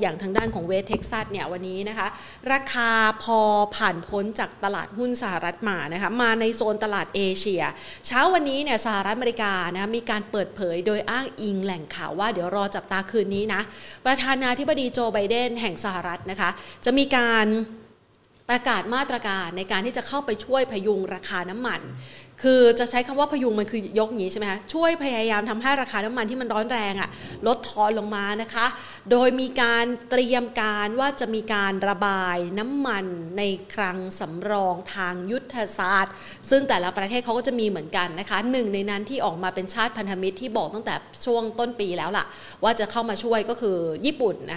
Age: 30-49